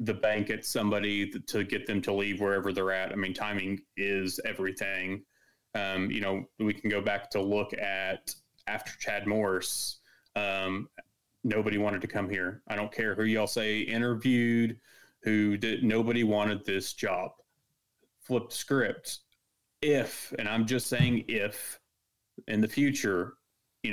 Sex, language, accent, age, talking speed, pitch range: male, English, American, 30-49, 155 wpm, 100-115 Hz